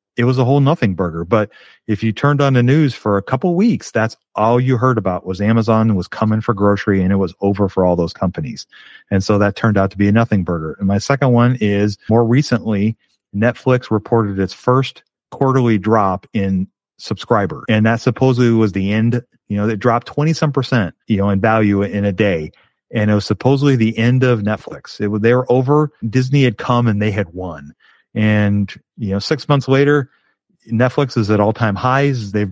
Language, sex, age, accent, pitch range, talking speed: English, male, 40-59, American, 100-125 Hz, 205 wpm